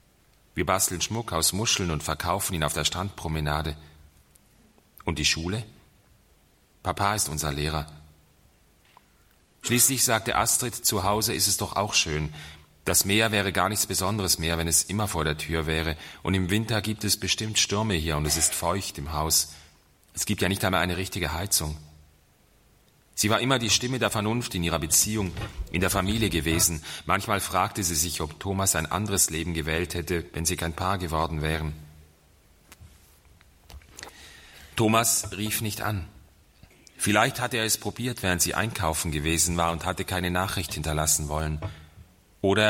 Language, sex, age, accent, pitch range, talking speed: German, male, 40-59, German, 80-100 Hz, 165 wpm